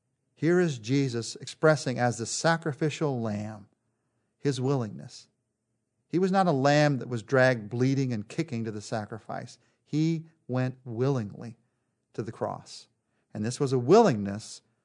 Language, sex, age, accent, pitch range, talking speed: English, male, 40-59, American, 120-155 Hz, 140 wpm